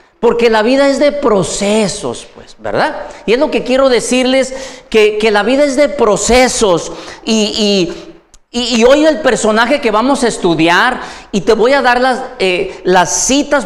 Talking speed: 170 wpm